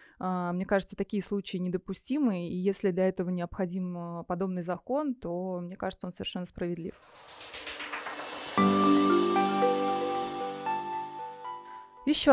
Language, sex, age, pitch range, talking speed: Russian, female, 20-39, 185-230 Hz, 90 wpm